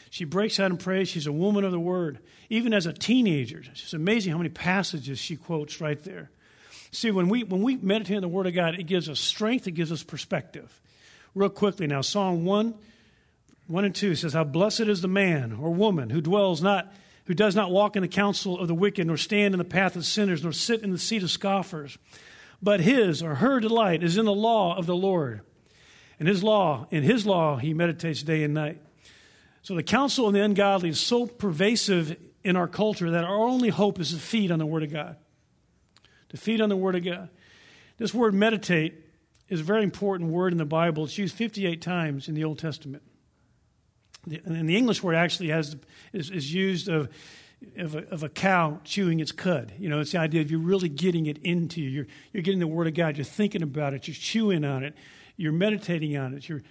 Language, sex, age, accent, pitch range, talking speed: English, male, 50-69, American, 155-200 Hz, 220 wpm